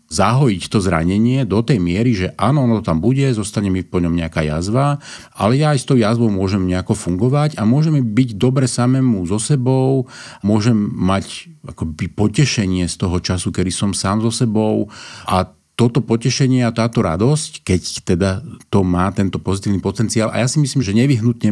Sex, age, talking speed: male, 40-59, 180 wpm